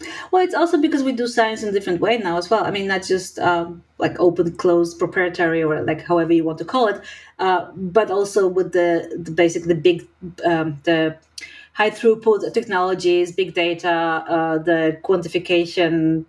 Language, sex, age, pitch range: English, female, 30-49, 170-225 Hz